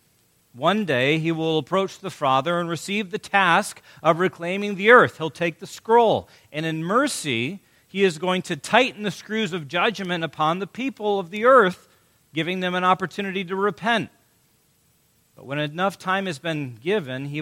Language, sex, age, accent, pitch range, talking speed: English, male, 40-59, American, 140-185 Hz, 175 wpm